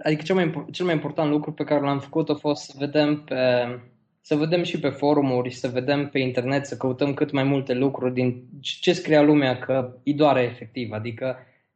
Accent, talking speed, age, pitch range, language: native, 195 wpm, 20-39, 130-165 Hz, Romanian